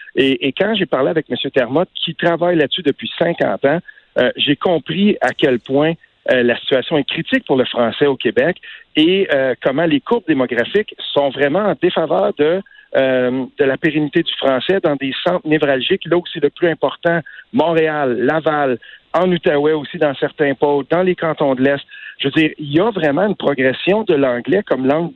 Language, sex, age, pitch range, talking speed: French, male, 50-69, 135-185 Hz, 200 wpm